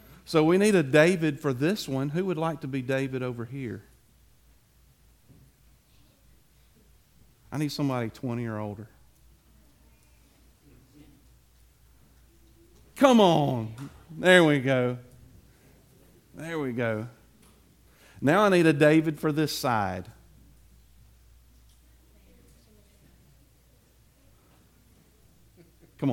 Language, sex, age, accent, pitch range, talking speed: English, male, 50-69, American, 110-170 Hz, 90 wpm